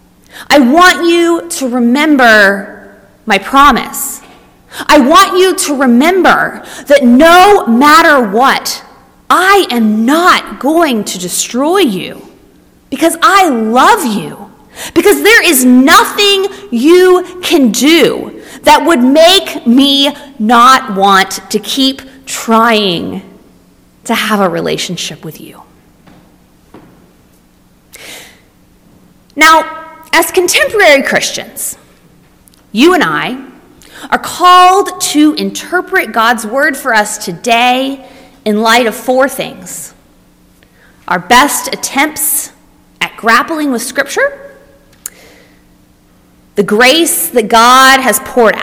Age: 30-49